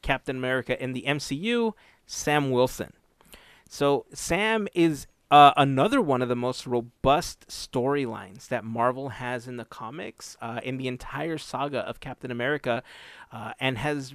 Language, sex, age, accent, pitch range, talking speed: English, male, 30-49, American, 120-155 Hz, 150 wpm